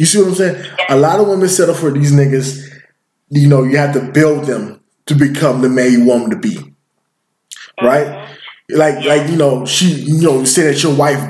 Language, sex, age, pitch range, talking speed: English, male, 20-39, 135-170 Hz, 225 wpm